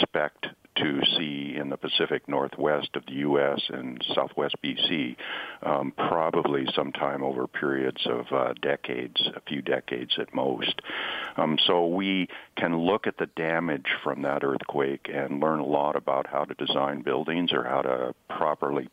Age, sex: 50-69, male